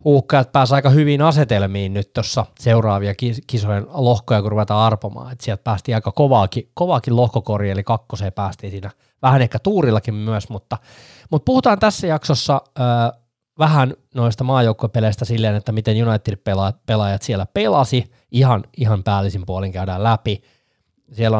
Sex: male